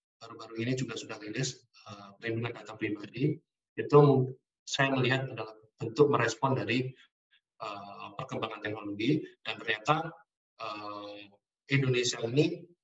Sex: male